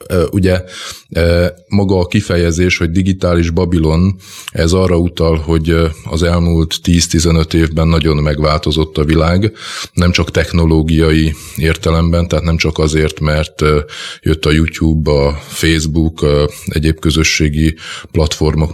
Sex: male